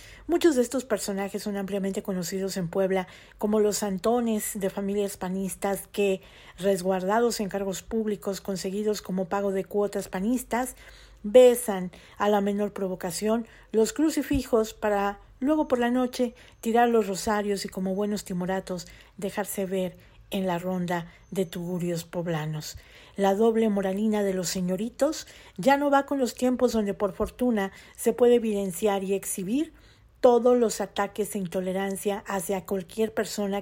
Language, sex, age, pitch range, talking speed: Spanish, female, 50-69, 190-225 Hz, 145 wpm